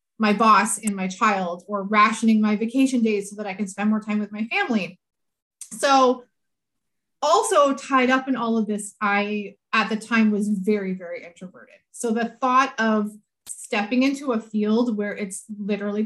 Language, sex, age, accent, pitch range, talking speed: English, female, 30-49, American, 205-255 Hz, 175 wpm